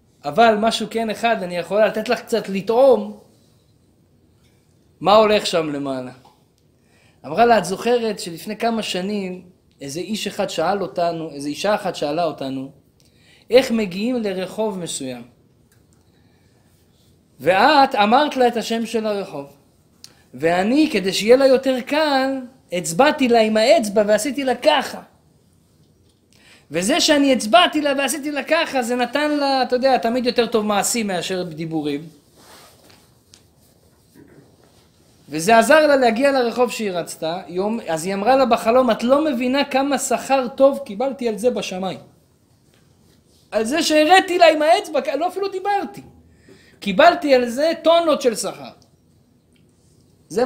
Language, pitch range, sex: Hebrew, 180-260 Hz, male